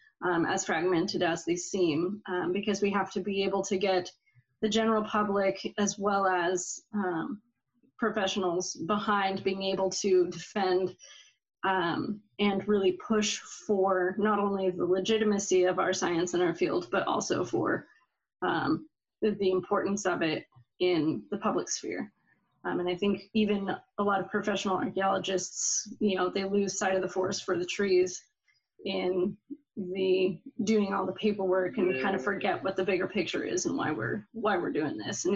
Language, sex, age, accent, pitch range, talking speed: English, female, 20-39, American, 185-205 Hz, 170 wpm